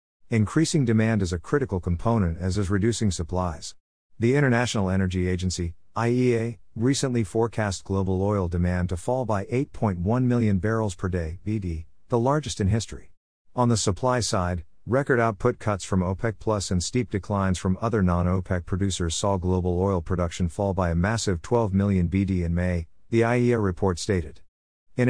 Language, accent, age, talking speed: English, American, 50-69, 165 wpm